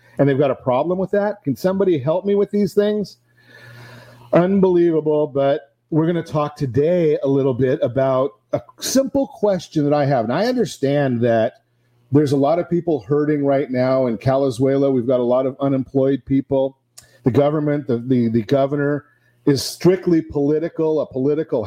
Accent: American